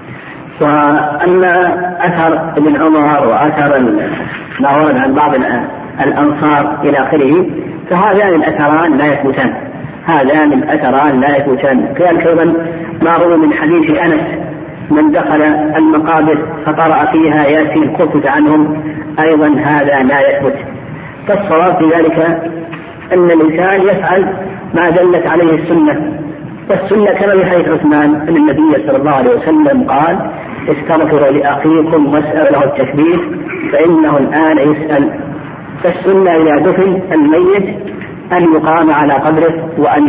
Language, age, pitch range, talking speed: Arabic, 50-69, 150-175 Hz, 115 wpm